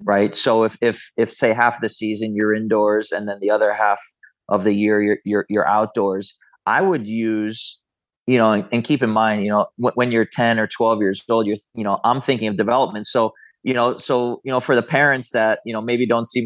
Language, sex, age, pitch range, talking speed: English, male, 30-49, 105-120 Hz, 235 wpm